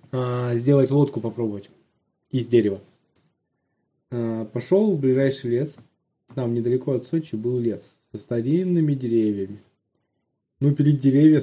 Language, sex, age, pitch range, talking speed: Russian, male, 20-39, 120-150 Hz, 110 wpm